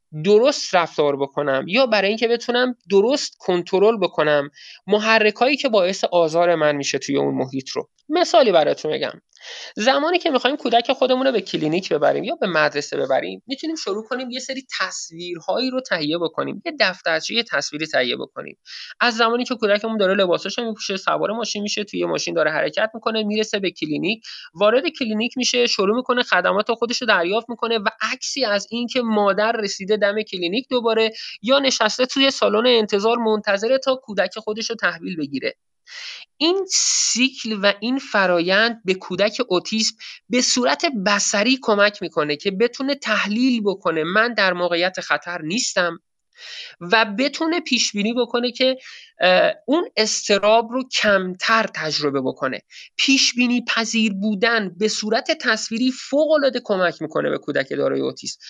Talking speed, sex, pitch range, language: 150 wpm, male, 195-255 Hz, Persian